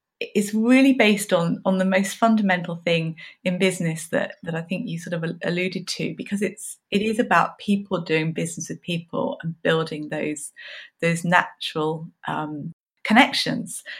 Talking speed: 160 wpm